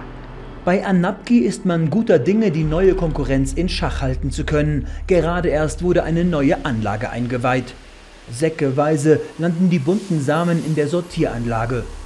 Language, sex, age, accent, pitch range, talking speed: German, male, 40-59, German, 145-195 Hz, 145 wpm